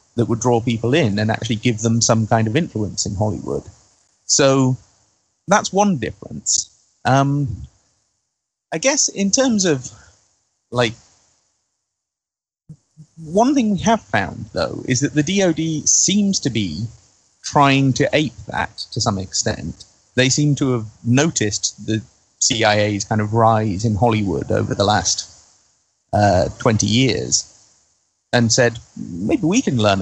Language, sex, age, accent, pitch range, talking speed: English, male, 30-49, British, 105-135 Hz, 140 wpm